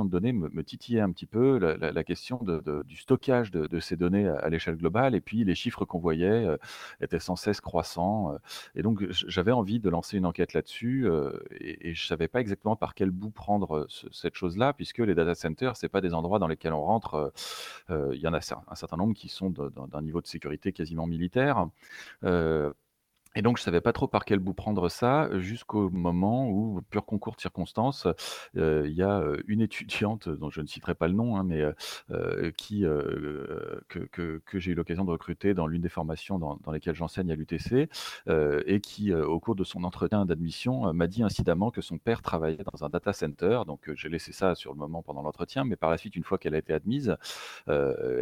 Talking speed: 235 wpm